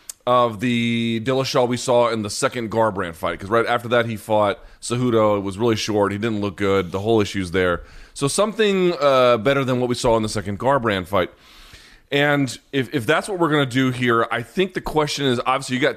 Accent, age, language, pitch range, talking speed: American, 30-49, English, 110-140 Hz, 225 wpm